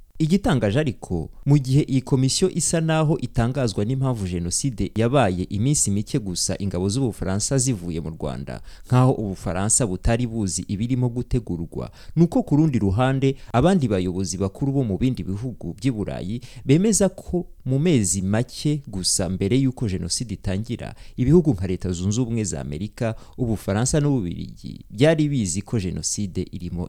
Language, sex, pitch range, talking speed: English, male, 100-160 Hz, 135 wpm